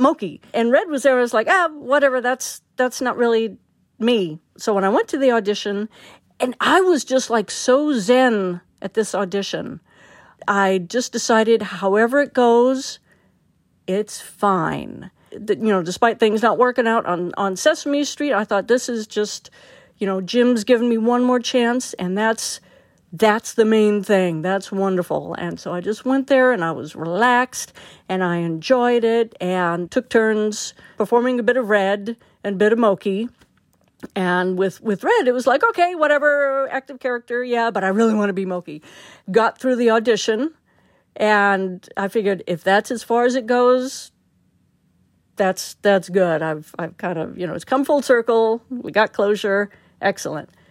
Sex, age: female, 50-69